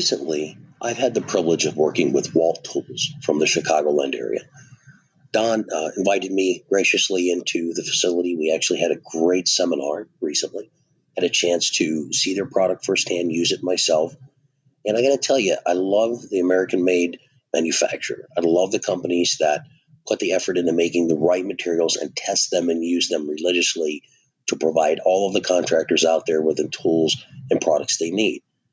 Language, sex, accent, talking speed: English, male, American, 180 wpm